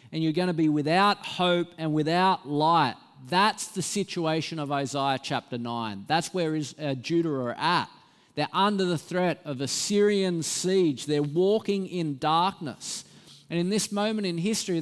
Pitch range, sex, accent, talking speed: 140-175 Hz, male, Australian, 165 wpm